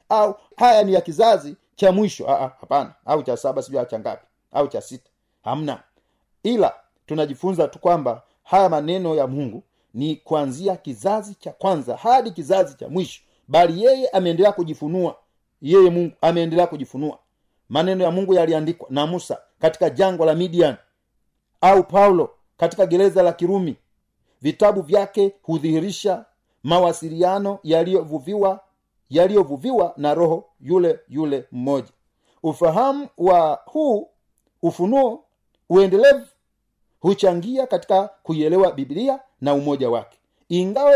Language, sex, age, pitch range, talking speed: Swahili, male, 40-59, 155-200 Hz, 125 wpm